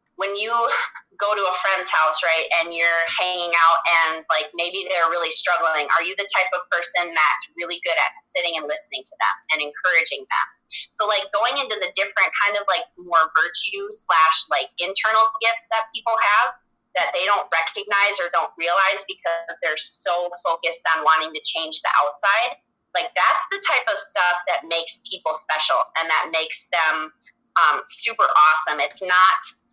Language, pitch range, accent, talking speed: English, 165-215 Hz, American, 180 wpm